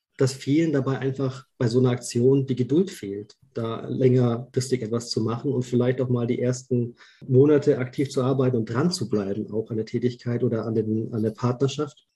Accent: German